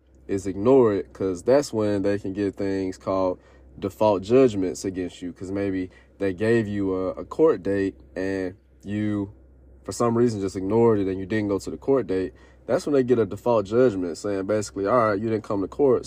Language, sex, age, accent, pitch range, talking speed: English, male, 20-39, American, 95-115 Hz, 210 wpm